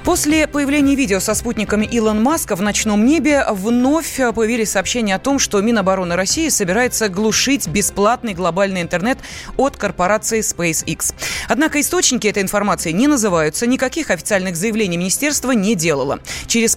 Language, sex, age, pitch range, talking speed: Russian, female, 20-39, 190-255 Hz, 140 wpm